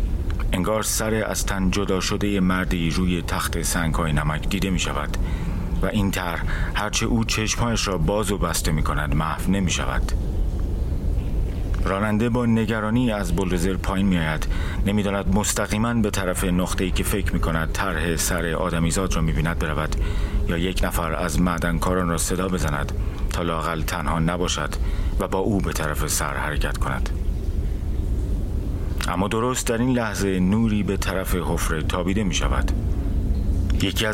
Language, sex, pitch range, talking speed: Persian, male, 80-100 Hz, 155 wpm